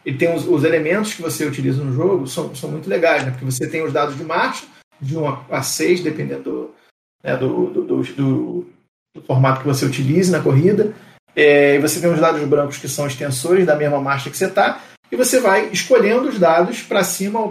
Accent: Brazilian